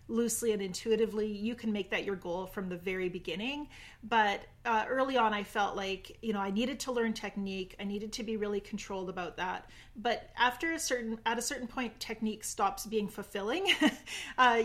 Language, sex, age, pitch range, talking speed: English, female, 30-49, 190-230 Hz, 195 wpm